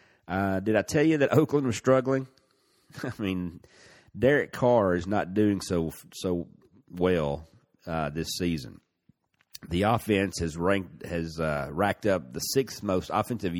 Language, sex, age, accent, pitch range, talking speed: English, male, 40-59, American, 80-105 Hz, 150 wpm